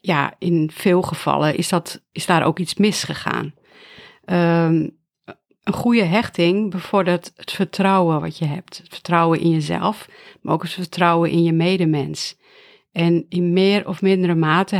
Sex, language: female, Dutch